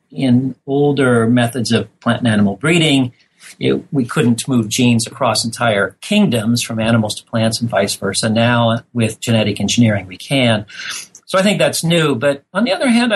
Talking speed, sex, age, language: 180 wpm, male, 40-59, English